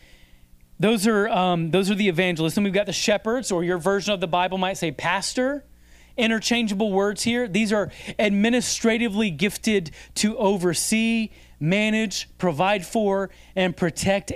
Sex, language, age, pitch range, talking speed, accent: male, English, 30-49, 135-215 Hz, 145 wpm, American